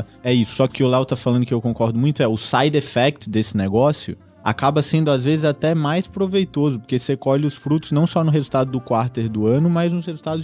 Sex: male